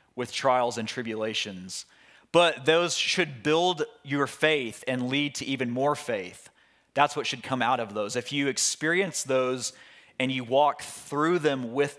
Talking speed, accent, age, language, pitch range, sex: 165 wpm, American, 30-49, English, 120-140 Hz, male